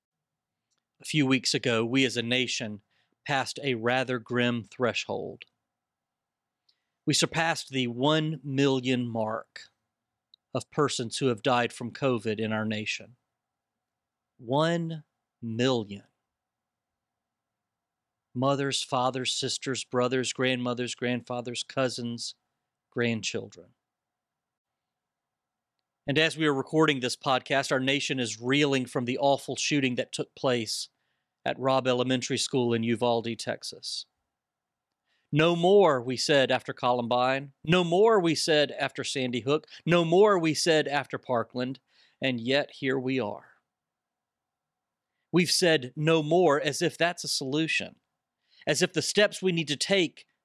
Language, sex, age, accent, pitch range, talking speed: English, male, 40-59, American, 125-150 Hz, 125 wpm